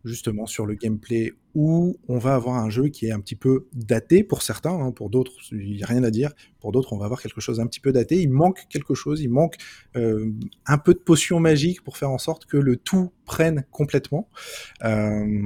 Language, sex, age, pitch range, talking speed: French, male, 20-39, 115-150 Hz, 230 wpm